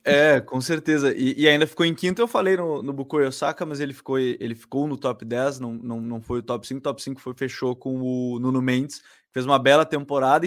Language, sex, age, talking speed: Portuguese, male, 20-39, 235 wpm